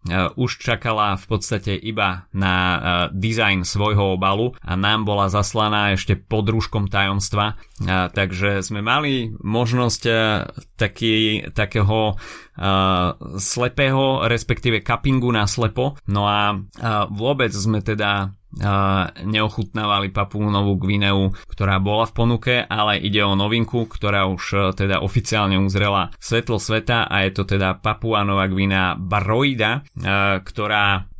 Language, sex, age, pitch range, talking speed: Slovak, male, 30-49, 95-110 Hz, 125 wpm